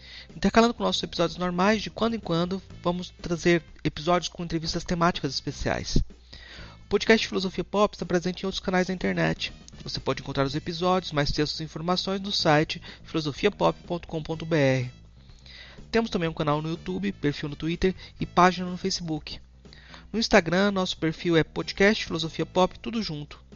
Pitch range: 150-185 Hz